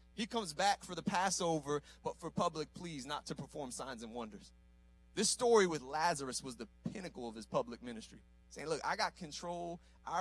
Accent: American